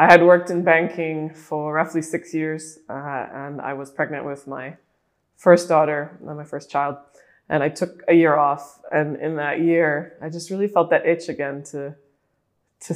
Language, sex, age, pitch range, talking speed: English, female, 20-39, 140-160 Hz, 185 wpm